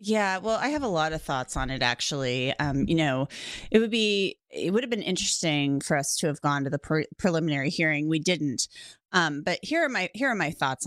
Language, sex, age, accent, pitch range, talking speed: English, female, 30-49, American, 150-195 Hz, 230 wpm